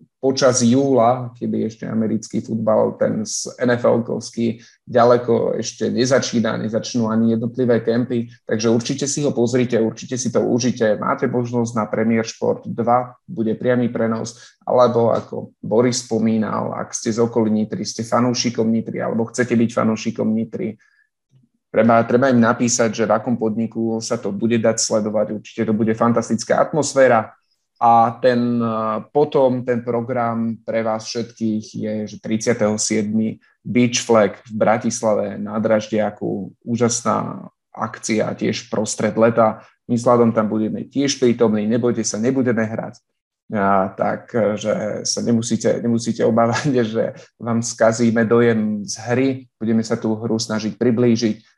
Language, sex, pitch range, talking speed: Slovak, male, 110-120 Hz, 140 wpm